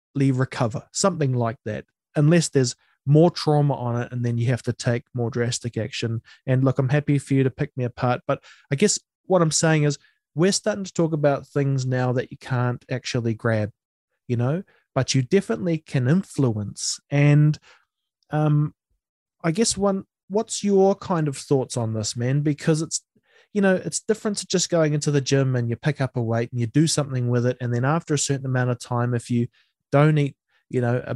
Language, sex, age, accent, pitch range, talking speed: English, male, 20-39, Australian, 125-170 Hz, 205 wpm